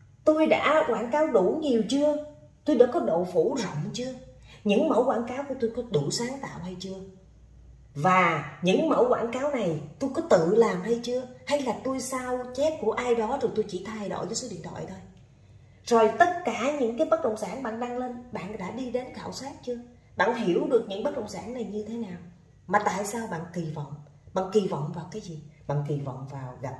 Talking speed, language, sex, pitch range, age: 230 wpm, Vietnamese, female, 140-230 Hz, 20-39